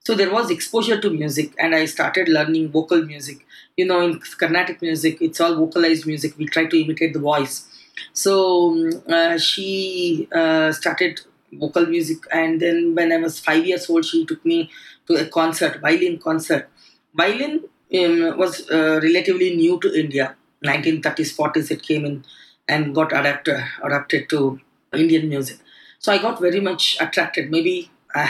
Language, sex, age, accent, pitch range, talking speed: English, female, 20-39, Indian, 160-195 Hz, 165 wpm